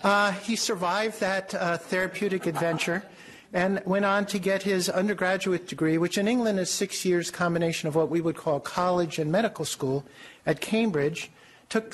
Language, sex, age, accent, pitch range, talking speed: English, male, 50-69, American, 160-195 Hz, 170 wpm